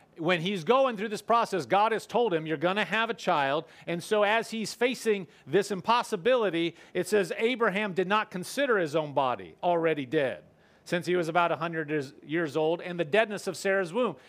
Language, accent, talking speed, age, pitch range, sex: English, American, 200 wpm, 40-59, 175-230 Hz, male